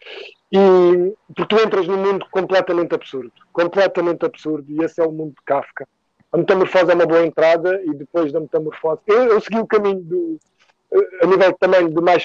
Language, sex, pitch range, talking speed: Portuguese, male, 155-190 Hz, 185 wpm